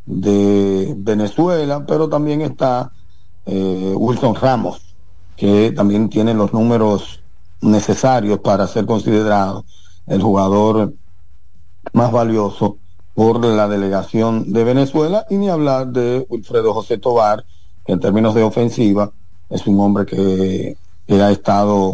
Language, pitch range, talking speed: Spanish, 95-115 Hz, 125 wpm